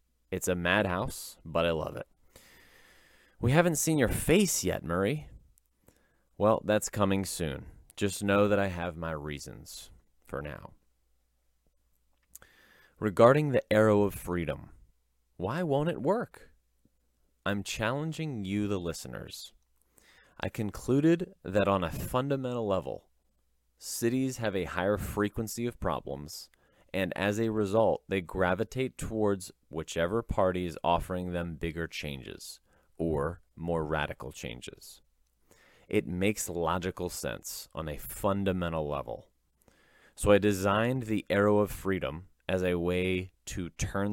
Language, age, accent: English, 30-49, American